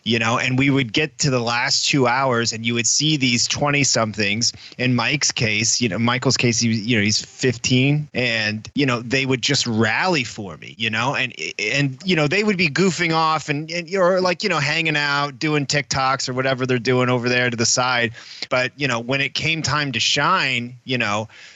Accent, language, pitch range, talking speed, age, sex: American, English, 115-140 Hz, 225 wpm, 30-49, male